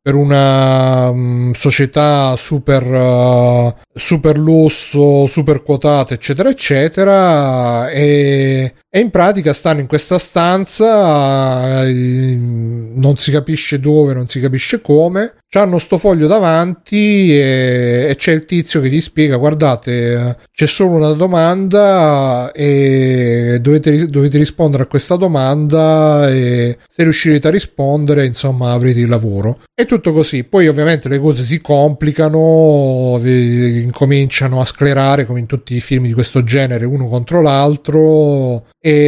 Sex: male